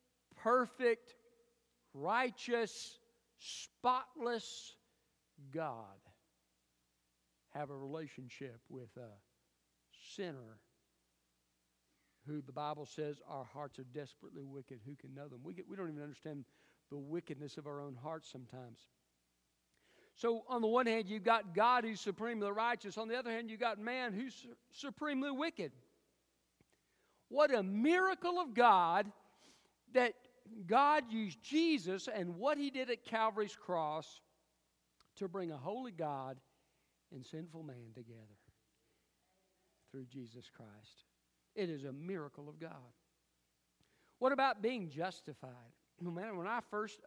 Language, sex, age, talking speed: English, male, 50-69, 125 wpm